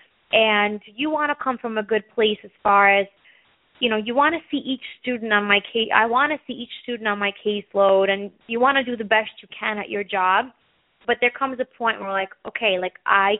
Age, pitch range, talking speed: 20-39, 205-245 Hz, 240 wpm